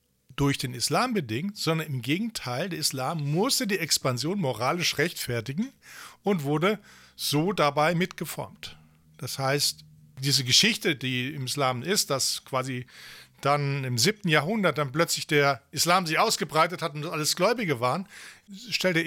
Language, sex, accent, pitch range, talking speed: English, male, German, 135-175 Hz, 140 wpm